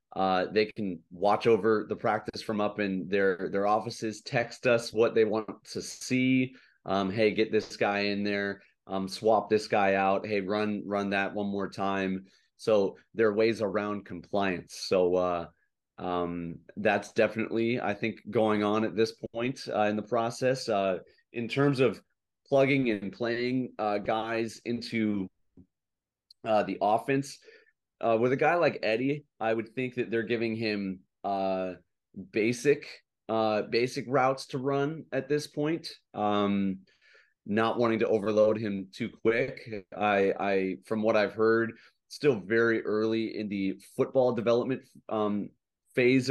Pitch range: 100-125 Hz